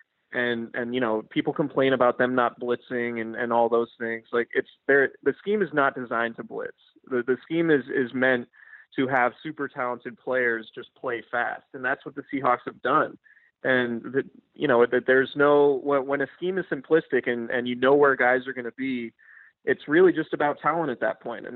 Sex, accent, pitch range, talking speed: male, American, 120-145 Hz, 215 wpm